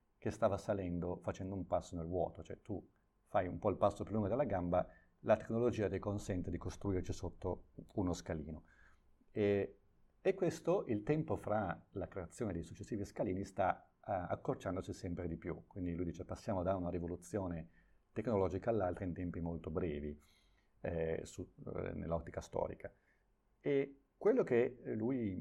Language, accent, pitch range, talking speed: Italian, native, 85-105 Hz, 150 wpm